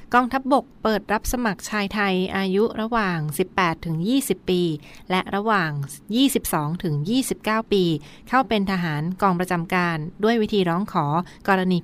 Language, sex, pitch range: Thai, female, 170-200 Hz